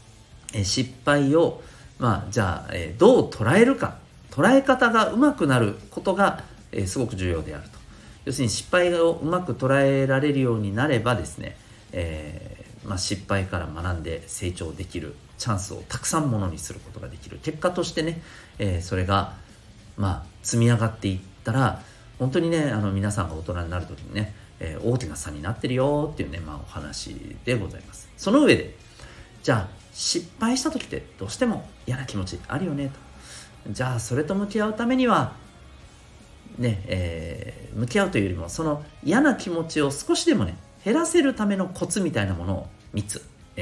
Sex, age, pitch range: male, 40-59, 95-140 Hz